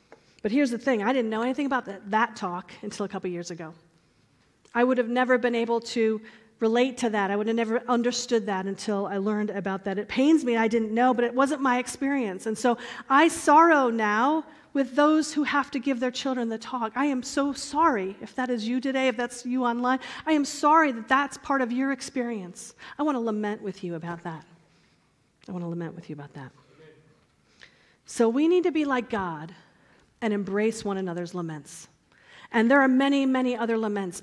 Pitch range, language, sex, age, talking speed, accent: 200-275 Hz, English, female, 40-59, 210 wpm, American